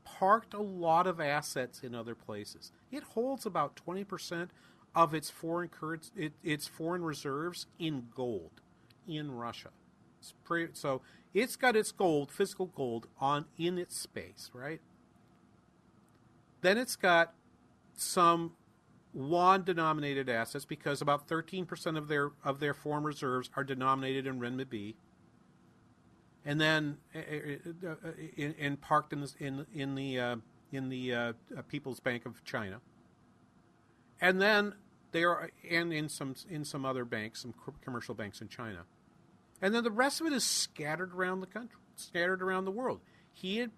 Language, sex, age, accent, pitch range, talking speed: English, male, 50-69, American, 135-185 Hz, 155 wpm